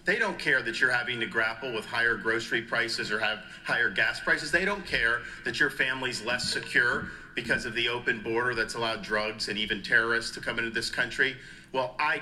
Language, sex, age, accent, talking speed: English, male, 50-69, American, 210 wpm